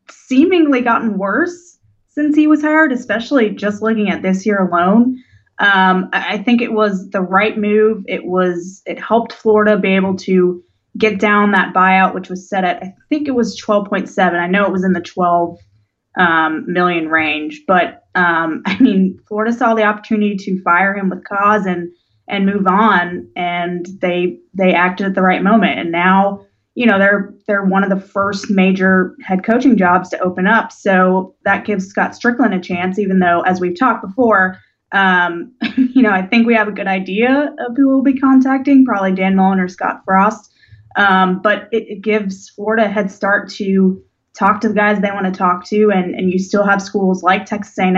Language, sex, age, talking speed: English, female, 20-39, 195 wpm